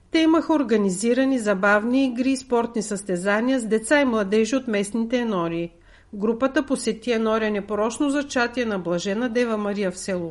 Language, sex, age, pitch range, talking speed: Bulgarian, female, 50-69, 210-270 Hz, 150 wpm